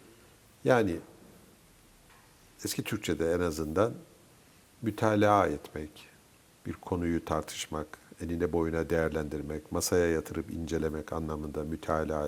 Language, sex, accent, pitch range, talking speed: Turkish, male, native, 80-100 Hz, 90 wpm